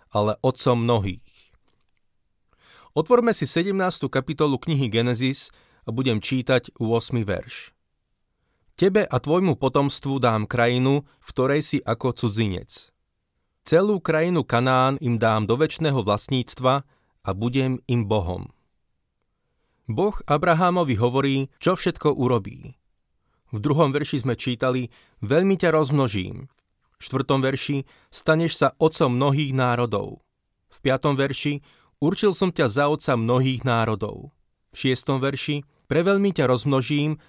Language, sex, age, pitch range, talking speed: Slovak, male, 30-49, 120-150 Hz, 120 wpm